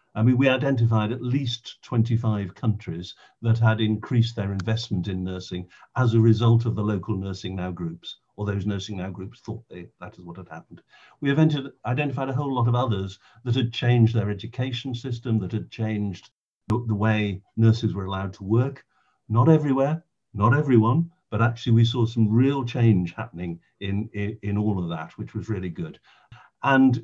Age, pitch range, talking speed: 50-69, 105-125 Hz, 180 wpm